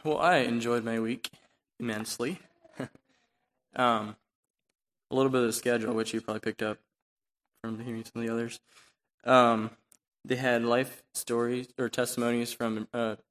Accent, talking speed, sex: American, 150 wpm, male